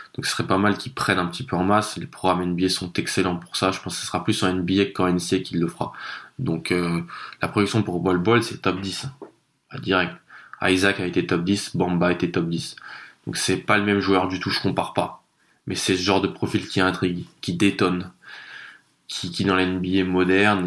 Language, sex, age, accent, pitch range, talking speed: French, male, 20-39, French, 90-100 Hz, 230 wpm